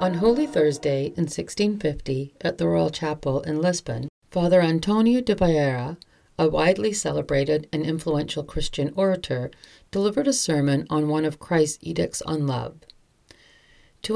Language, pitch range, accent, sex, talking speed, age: English, 140-185 Hz, American, female, 140 wpm, 40-59